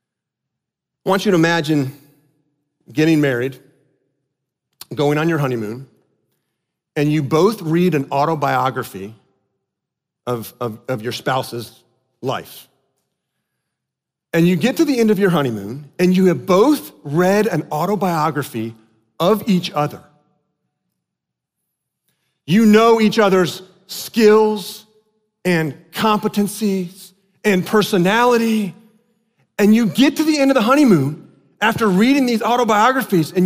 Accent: American